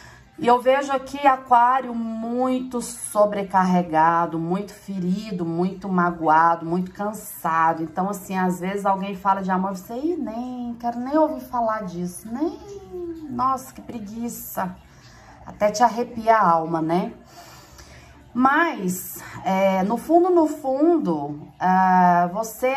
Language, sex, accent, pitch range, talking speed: Portuguese, female, Brazilian, 170-240 Hz, 125 wpm